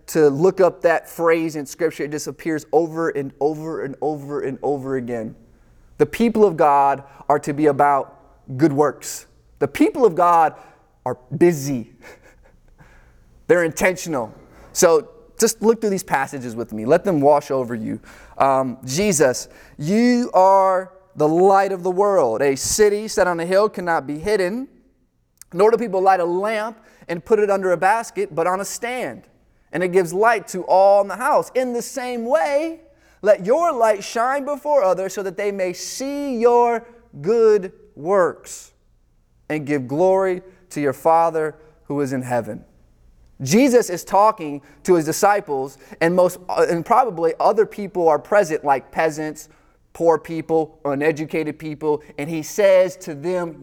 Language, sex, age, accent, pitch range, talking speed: English, male, 20-39, American, 145-205 Hz, 160 wpm